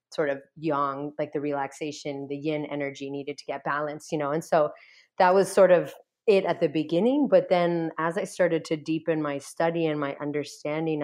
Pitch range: 145-165 Hz